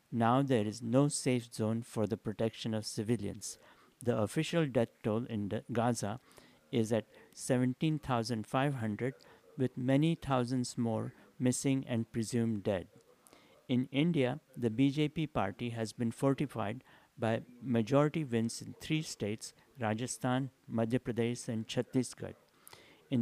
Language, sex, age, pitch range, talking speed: English, male, 50-69, 115-140 Hz, 125 wpm